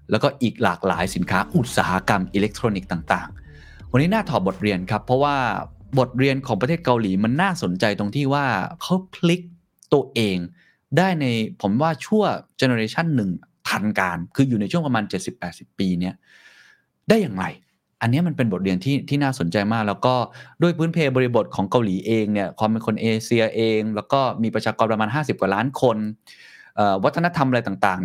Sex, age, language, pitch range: male, 20-39, Thai, 100-140 Hz